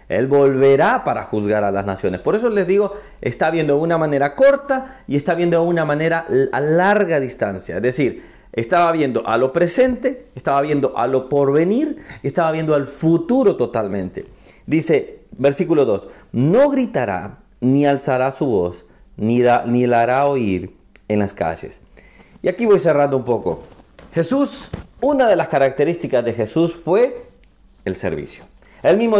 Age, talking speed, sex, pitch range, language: 40-59, 165 wpm, male, 120-200 Hz, Spanish